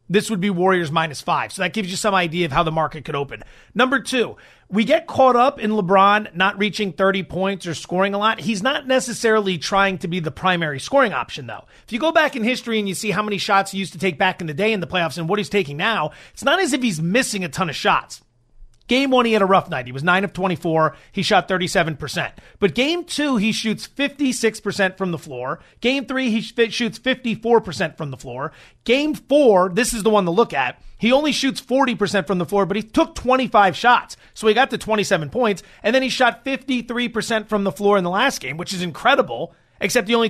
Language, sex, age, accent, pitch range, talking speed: English, male, 30-49, American, 180-230 Hz, 240 wpm